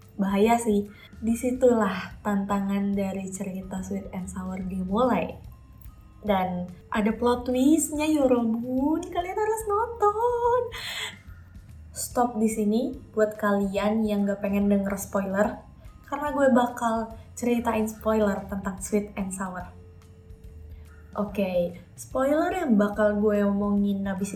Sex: female